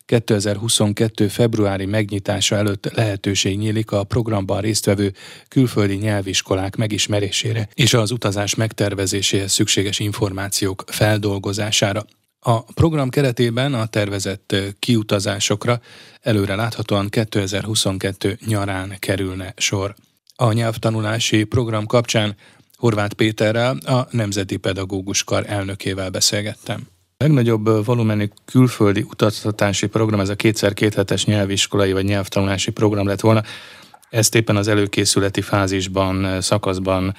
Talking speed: 100 wpm